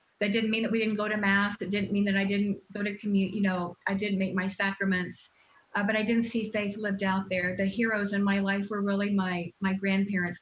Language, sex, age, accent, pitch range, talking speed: English, female, 40-59, American, 180-200 Hz, 255 wpm